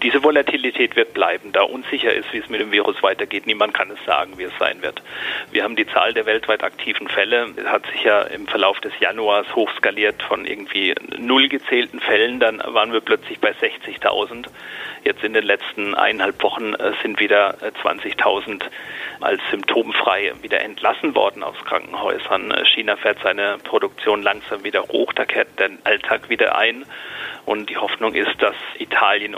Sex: male